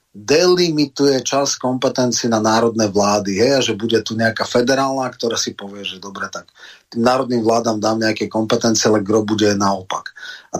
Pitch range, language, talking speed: 110-125 Hz, Slovak, 170 wpm